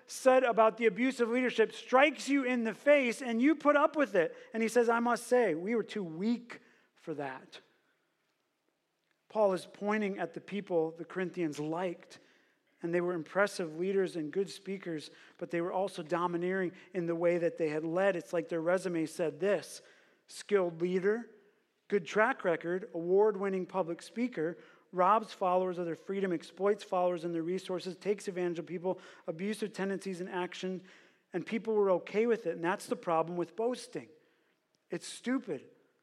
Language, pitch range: English, 175-230 Hz